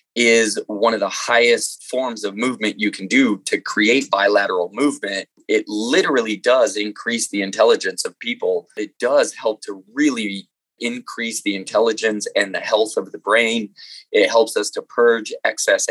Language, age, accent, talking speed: English, 20-39, American, 160 wpm